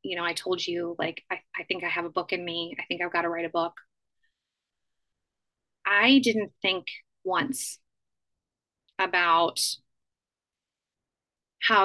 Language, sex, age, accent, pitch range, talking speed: English, female, 20-39, American, 175-215 Hz, 145 wpm